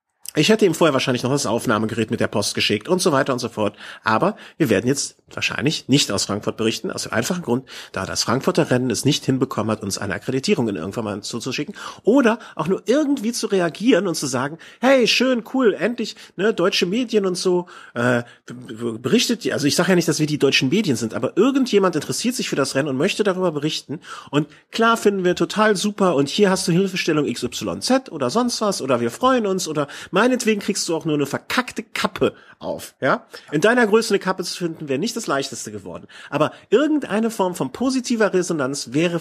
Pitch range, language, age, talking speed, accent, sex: 125-195 Hz, German, 40-59, 215 wpm, German, male